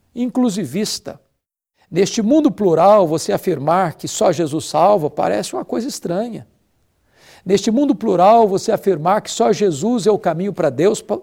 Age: 60-79